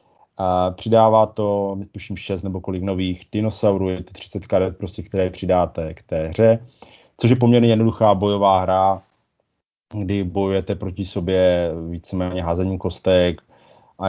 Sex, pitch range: male, 90-105 Hz